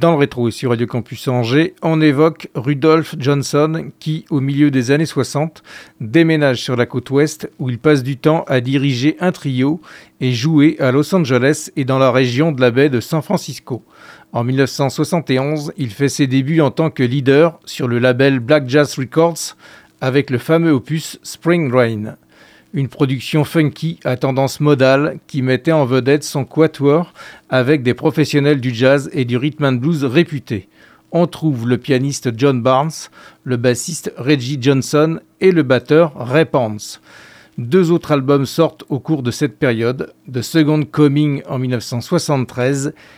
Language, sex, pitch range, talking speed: French, male, 130-155 Hz, 170 wpm